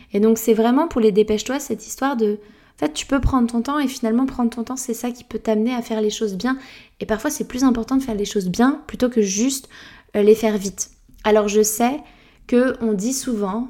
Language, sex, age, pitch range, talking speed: French, female, 20-39, 205-240 Hz, 235 wpm